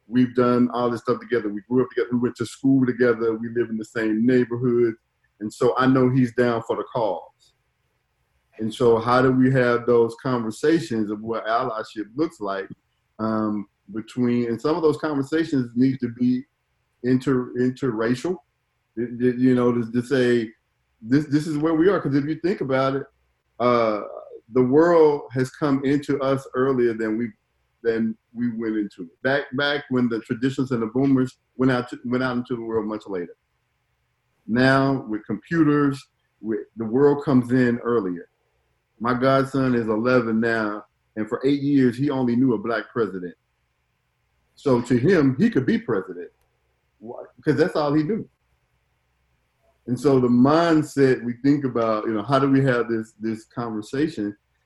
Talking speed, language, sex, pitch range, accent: 170 wpm, English, male, 110-135 Hz, American